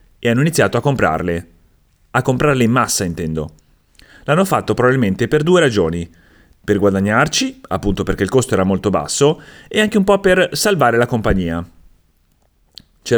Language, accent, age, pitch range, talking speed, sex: Italian, native, 30-49, 100-145 Hz, 155 wpm, male